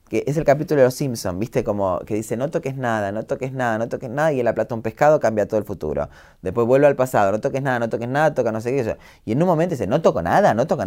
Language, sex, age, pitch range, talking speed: Spanish, male, 20-39, 110-155 Hz, 305 wpm